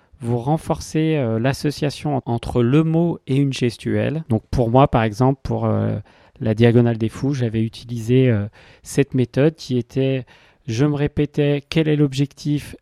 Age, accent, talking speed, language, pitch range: 40-59, French, 160 wpm, French, 115-140 Hz